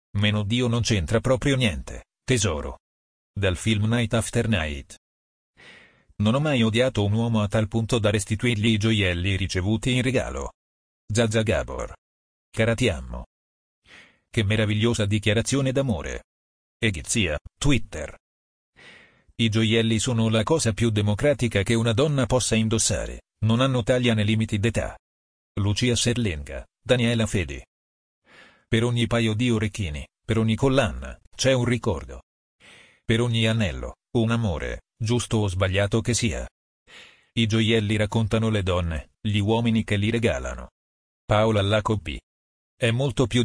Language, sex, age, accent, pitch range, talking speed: Italian, male, 40-59, native, 80-115 Hz, 135 wpm